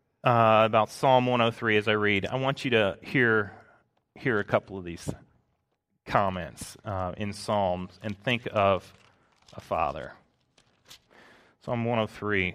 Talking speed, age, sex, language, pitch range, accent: 135 wpm, 30-49, male, English, 105-135 Hz, American